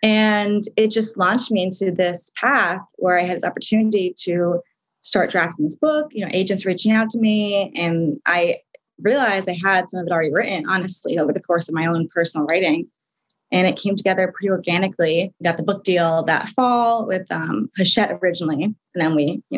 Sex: female